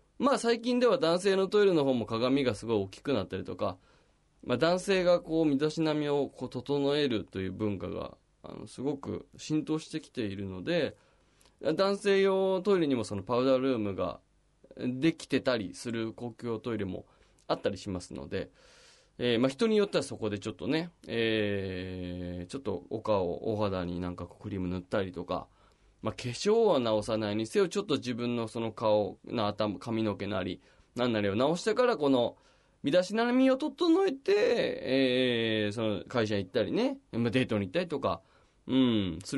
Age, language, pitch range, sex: 20-39, Japanese, 100-160 Hz, male